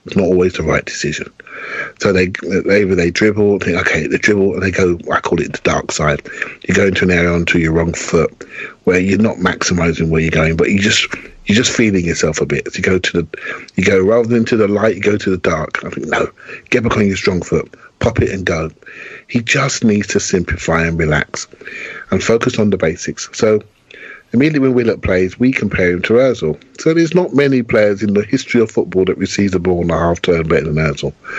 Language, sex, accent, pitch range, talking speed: English, male, British, 85-110 Hz, 230 wpm